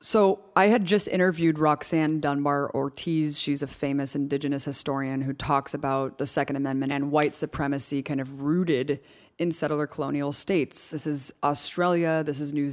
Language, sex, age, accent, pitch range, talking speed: English, female, 20-39, American, 140-155 Hz, 160 wpm